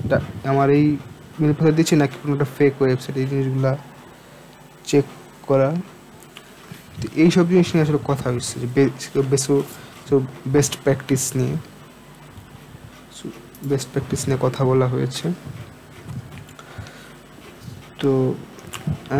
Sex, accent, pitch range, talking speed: male, native, 130-150 Hz, 95 wpm